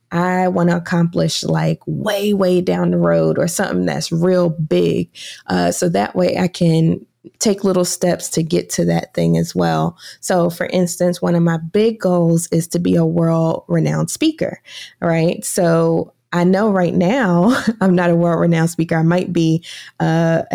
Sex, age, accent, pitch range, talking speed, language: female, 20-39, American, 160-185 Hz, 180 wpm, English